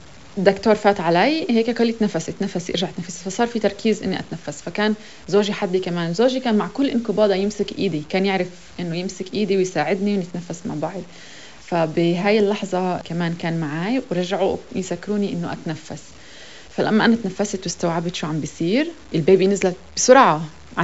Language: Arabic